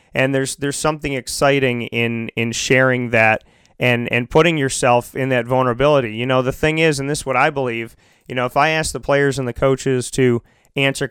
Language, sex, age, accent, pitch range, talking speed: English, male, 30-49, American, 120-135 Hz, 210 wpm